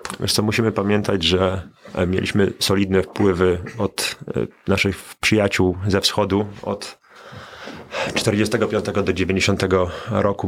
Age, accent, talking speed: 30-49, native, 95 wpm